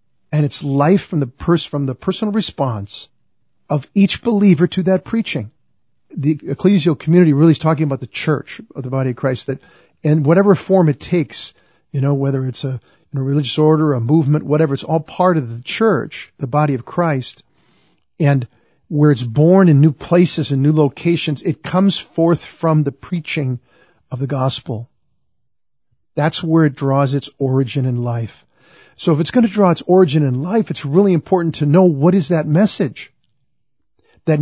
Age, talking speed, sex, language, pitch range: 50-69, 180 wpm, male, English, 140-175 Hz